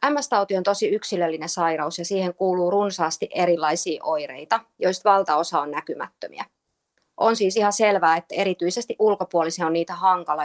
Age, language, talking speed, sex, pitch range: 30-49, Finnish, 145 wpm, female, 175-215 Hz